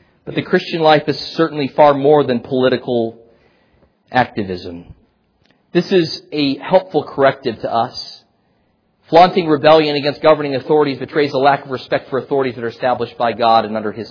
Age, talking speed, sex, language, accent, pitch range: 40-59, 160 wpm, male, English, American, 130-165 Hz